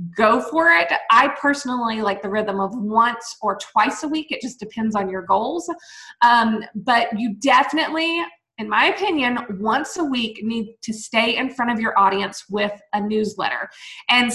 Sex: female